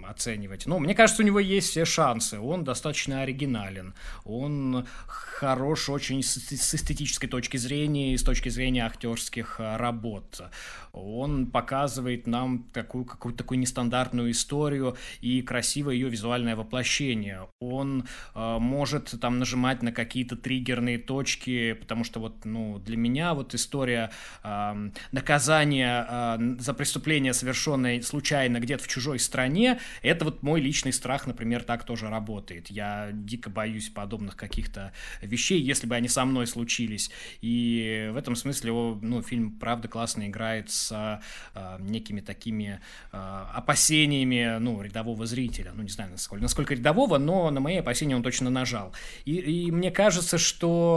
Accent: native